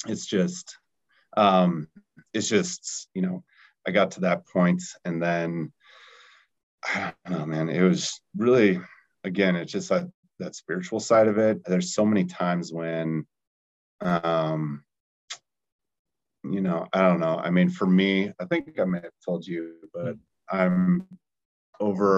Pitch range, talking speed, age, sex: 85-100 Hz, 150 wpm, 30-49, male